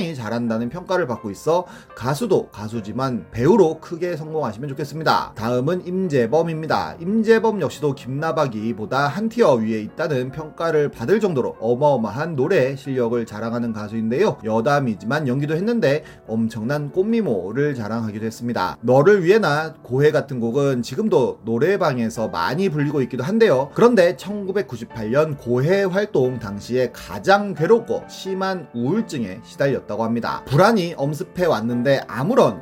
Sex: male